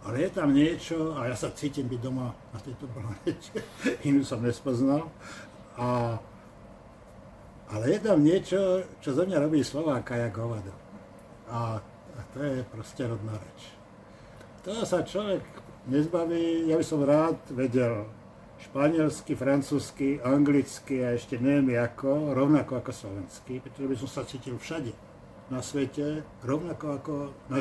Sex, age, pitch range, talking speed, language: male, 60-79, 120-145 Hz, 145 wpm, Slovak